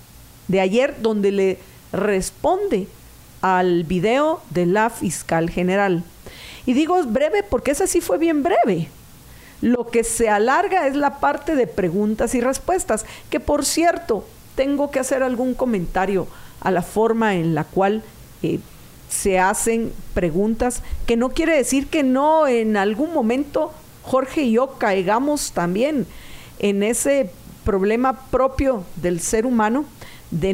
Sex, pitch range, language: female, 185-260 Hz, Spanish